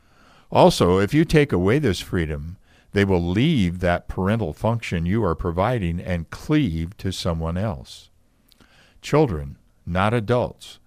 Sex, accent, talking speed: male, American, 130 wpm